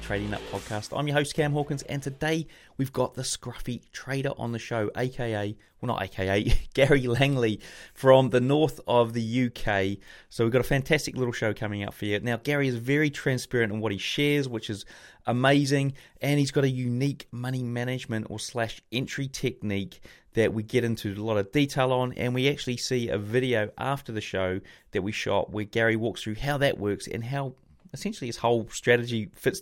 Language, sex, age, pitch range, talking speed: English, male, 30-49, 115-140 Hz, 200 wpm